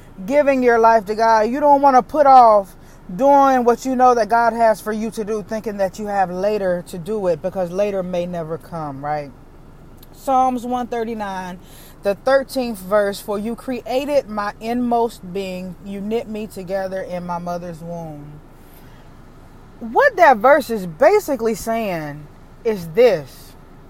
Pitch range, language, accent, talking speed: 215-290 Hz, English, American, 160 wpm